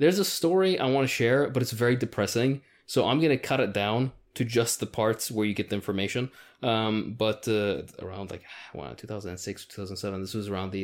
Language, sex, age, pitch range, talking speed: English, male, 20-39, 100-120 Hz, 215 wpm